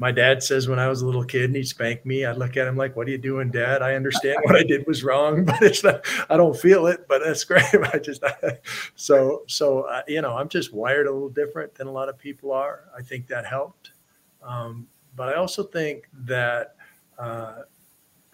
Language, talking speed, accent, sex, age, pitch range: English, 230 wpm, American, male, 50-69, 115-140 Hz